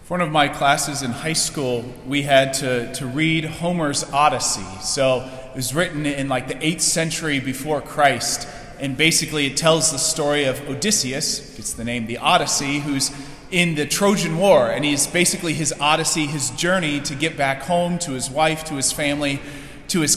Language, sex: English, male